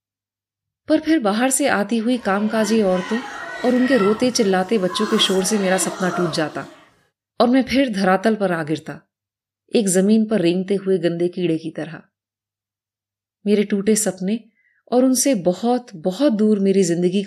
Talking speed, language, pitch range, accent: 130 wpm, Hindi, 170-245 Hz, native